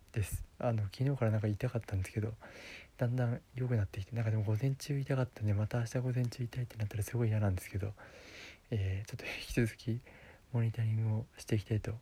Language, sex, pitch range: Japanese, male, 100-120 Hz